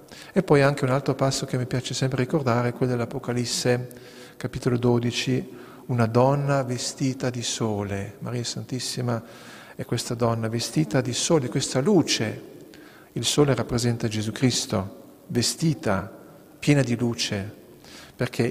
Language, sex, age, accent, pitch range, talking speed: Italian, male, 50-69, native, 120-160 Hz, 130 wpm